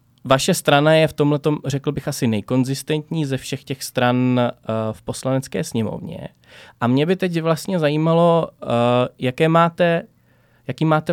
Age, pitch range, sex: 20-39, 120-155 Hz, male